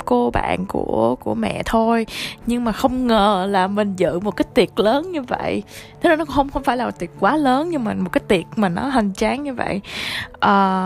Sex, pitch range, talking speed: female, 190-260 Hz, 230 wpm